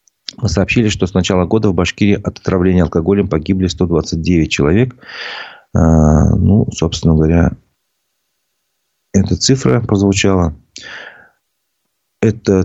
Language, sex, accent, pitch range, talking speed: Russian, male, native, 85-100 Hz, 100 wpm